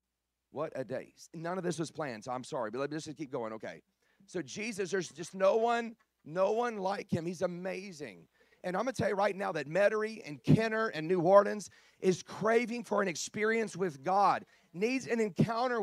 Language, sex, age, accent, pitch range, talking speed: English, male, 40-59, American, 190-255 Hz, 210 wpm